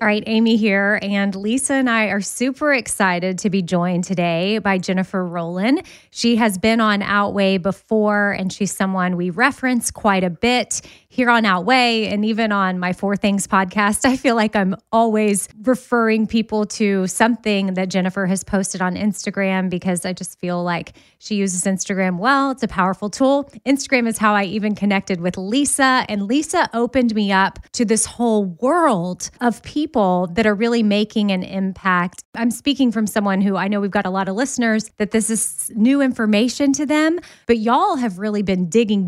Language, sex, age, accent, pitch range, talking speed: English, female, 20-39, American, 190-235 Hz, 185 wpm